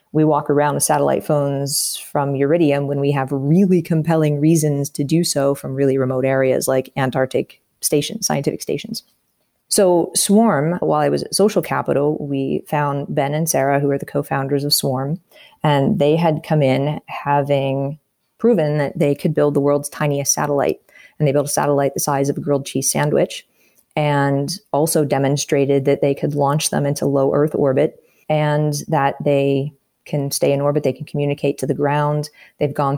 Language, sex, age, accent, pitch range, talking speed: English, female, 30-49, American, 140-155 Hz, 180 wpm